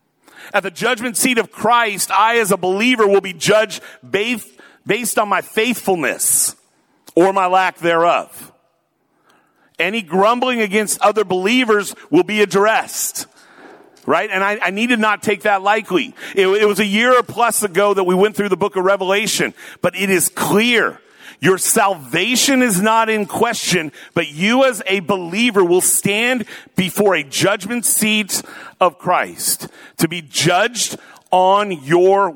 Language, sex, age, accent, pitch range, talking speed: English, male, 40-59, American, 180-220 Hz, 155 wpm